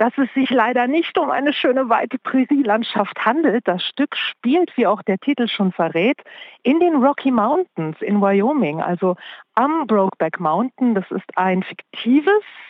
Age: 40-59